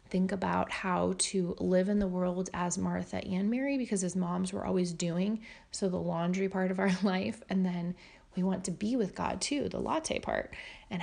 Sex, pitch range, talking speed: female, 180-220 Hz, 205 wpm